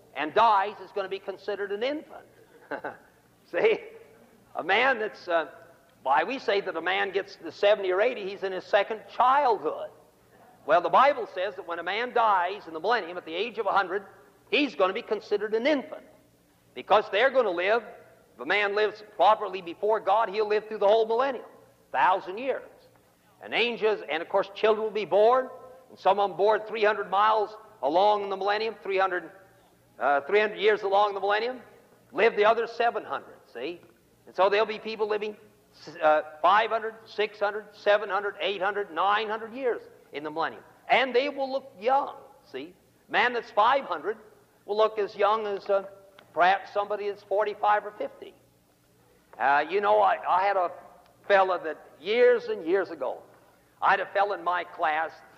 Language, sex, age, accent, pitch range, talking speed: English, male, 50-69, American, 195-225 Hz, 180 wpm